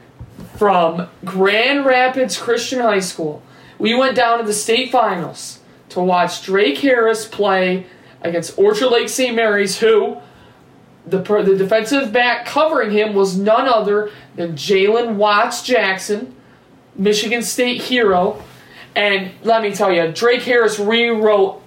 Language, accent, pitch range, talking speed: English, American, 190-235 Hz, 135 wpm